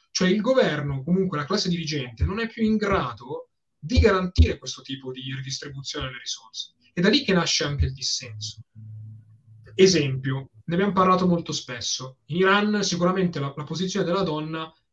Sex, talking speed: male, 170 wpm